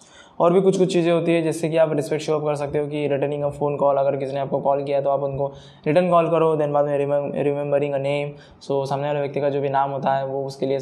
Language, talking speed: Hindi, 290 wpm